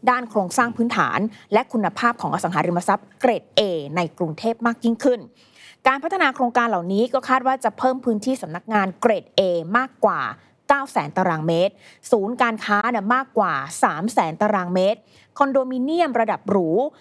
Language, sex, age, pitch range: Thai, female, 20-39, 190-255 Hz